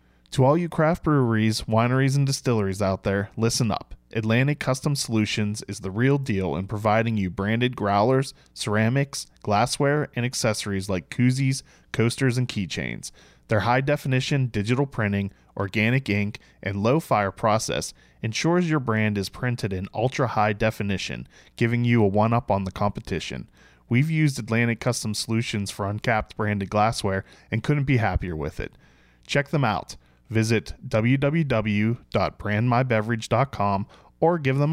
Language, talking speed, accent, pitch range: English, 140 wpm, American, 100-130 Hz